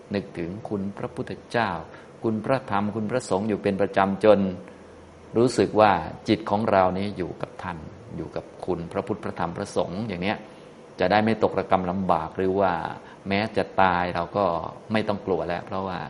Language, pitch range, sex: Thai, 95-110 Hz, male